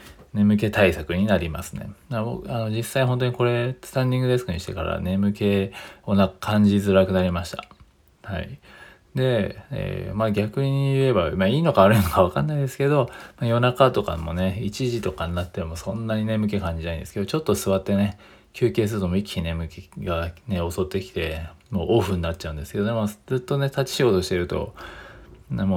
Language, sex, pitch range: Japanese, male, 90-120 Hz